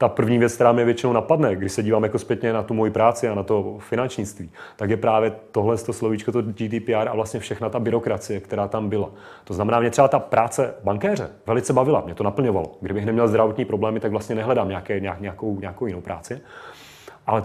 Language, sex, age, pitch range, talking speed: Czech, male, 30-49, 100-115 Hz, 215 wpm